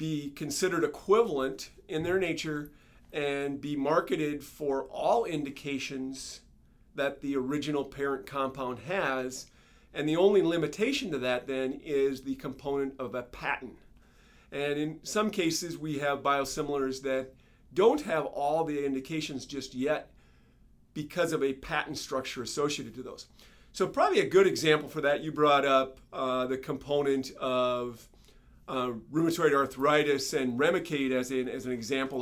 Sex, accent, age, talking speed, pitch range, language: male, American, 50-69, 145 wpm, 130-150 Hz, English